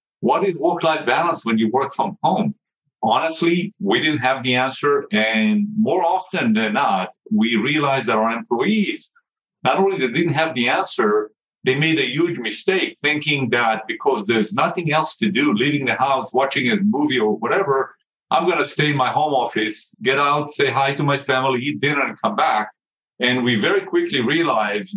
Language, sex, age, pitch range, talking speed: English, male, 50-69, 120-205 Hz, 185 wpm